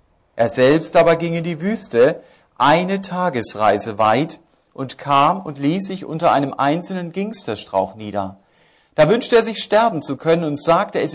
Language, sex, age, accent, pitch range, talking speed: German, male, 40-59, German, 130-175 Hz, 160 wpm